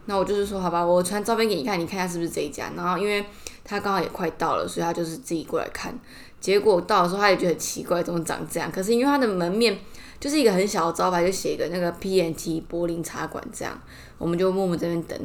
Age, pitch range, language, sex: 20-39, 170-200 Hz, Chinese, female